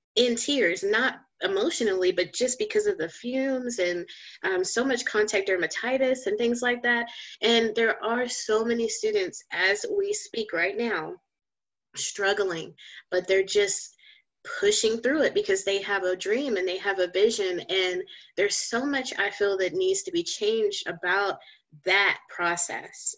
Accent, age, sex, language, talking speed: American, 20-39, female, English, 160 wpm